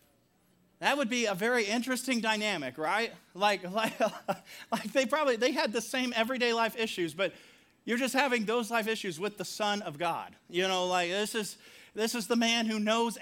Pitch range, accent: 195-245 Hz, American